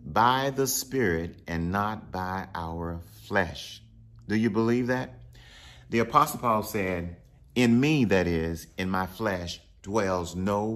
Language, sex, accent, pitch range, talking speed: English, male, American, 80-110 Hz, 140 wpm